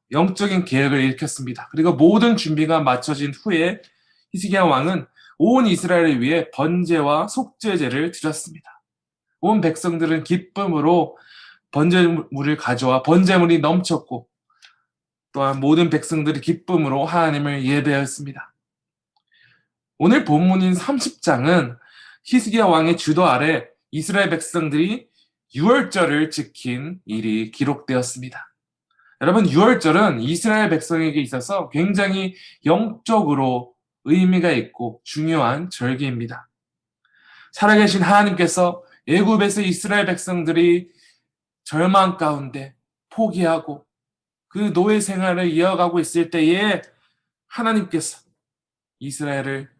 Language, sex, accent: Korean, male, native